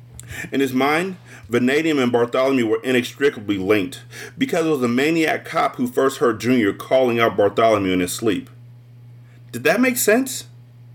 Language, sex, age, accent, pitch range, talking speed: English, male, 40-59, American, 120-130 Hz, 160 wpm